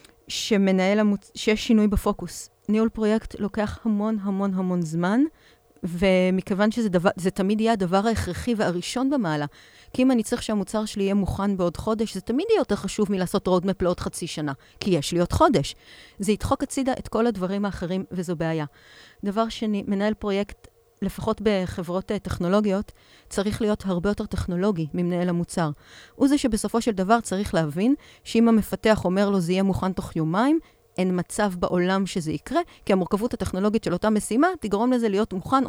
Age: 40-59